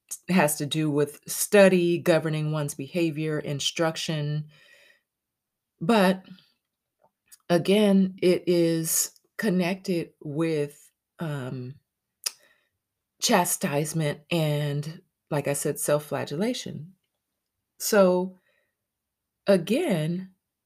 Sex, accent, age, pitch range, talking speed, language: female, American, 30-49, 140-180 Hz, 75 wpm, English